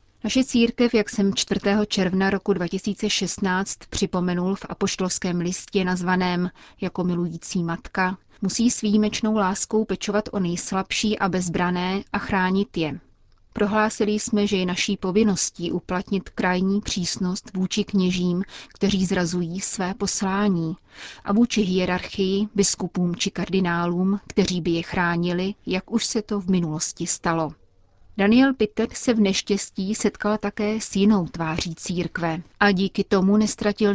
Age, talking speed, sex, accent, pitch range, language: 30-49, 135 wpm, female, native, 180-205 Hz, Czech